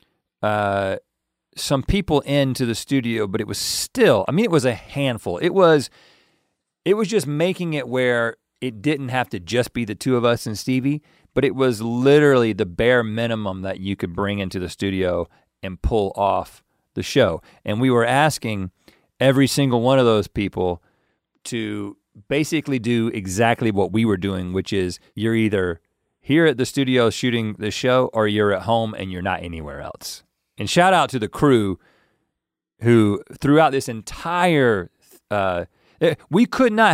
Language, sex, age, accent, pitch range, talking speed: English, male, 40-59, American, 105-145 Hz, 170 wpm